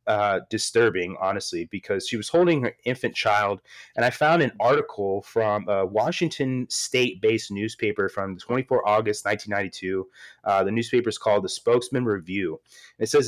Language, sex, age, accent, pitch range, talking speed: English, male, 30-49, American, 100-125 Hz, 160 wpm